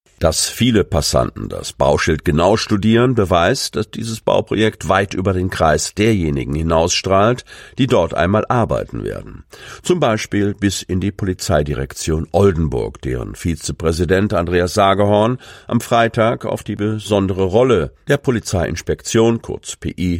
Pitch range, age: 85-110 Hz, 50-69